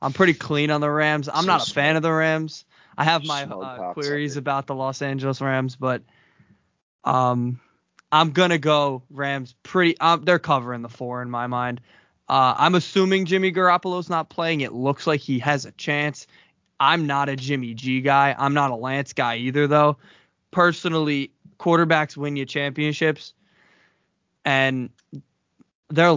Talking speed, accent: 165 wpm, American